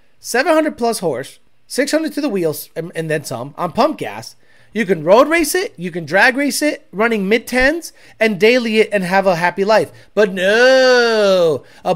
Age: 30-49